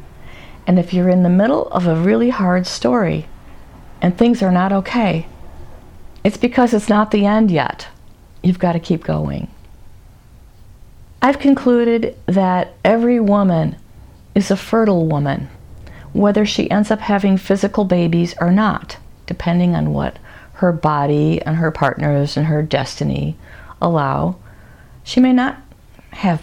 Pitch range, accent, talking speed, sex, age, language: 150-210 Hz, American, 140 wpm, female, 50-69, English